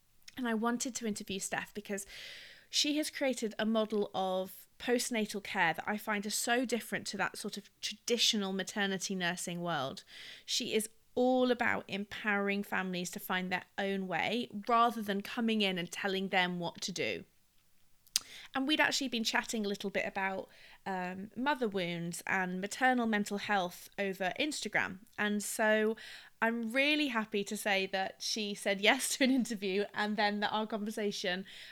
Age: 30-49